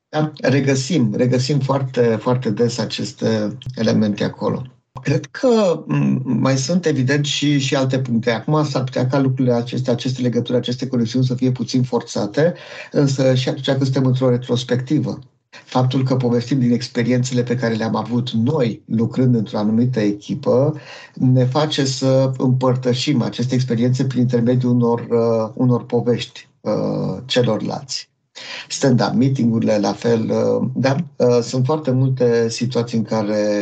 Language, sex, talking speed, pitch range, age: Romanian, male, 140 wpm, 115-135 Hz, 50-69